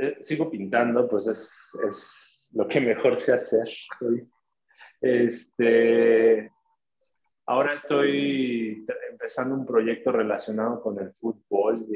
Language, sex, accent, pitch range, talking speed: Spanish, male, Mexican, 110-150 Hz, 105 wpm